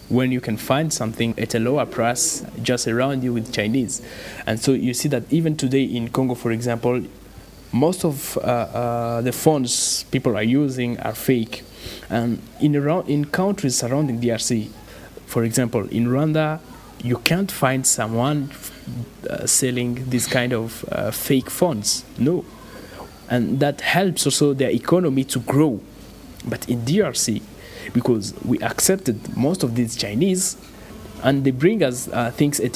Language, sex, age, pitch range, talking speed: English, male, 20-39, 115-145 Hz, 160 wpm